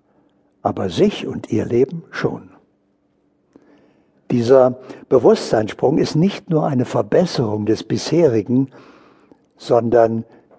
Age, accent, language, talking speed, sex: 60-79, German, German, 90 wpm, male